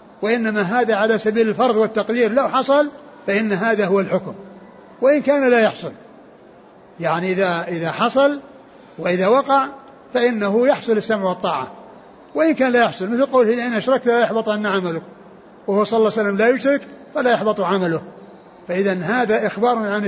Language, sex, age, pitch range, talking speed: Arabic, male, 60-79, 195-245 Hz, 150 wpm